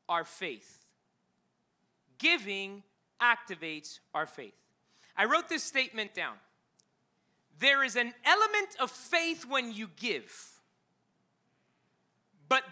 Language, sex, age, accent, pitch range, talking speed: English, male, 30-49, American, 215-315 Hz, 100 wpm